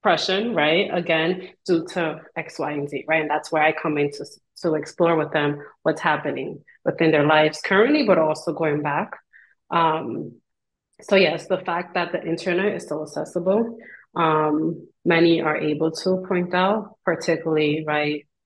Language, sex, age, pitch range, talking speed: English, female, 30-49, 155-180 Hz, 165 wpm